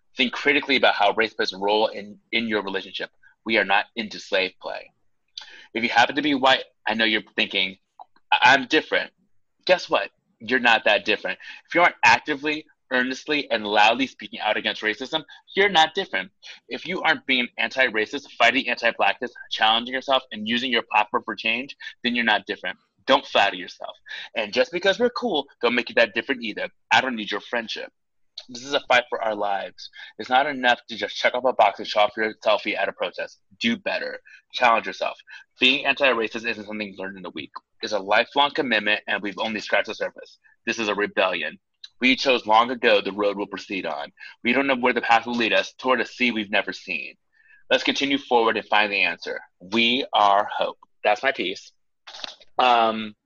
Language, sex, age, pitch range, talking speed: English, male, 30-49, 110-150 Hz, 200 wpm